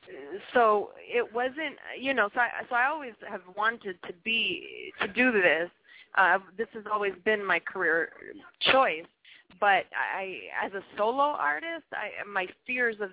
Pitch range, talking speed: 180-220 Hz, 160 wpm